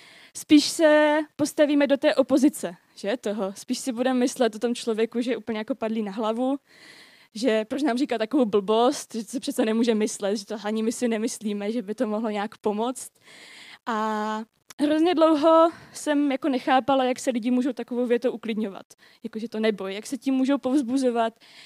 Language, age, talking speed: Czech, 20-39, 180 wpm